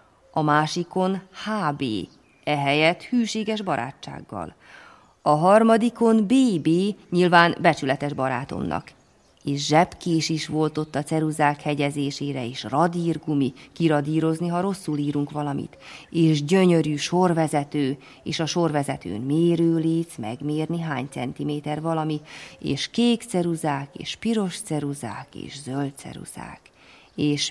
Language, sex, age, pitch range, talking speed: Hungarian, female, 30-49, 150-185 Hz, 105 wpm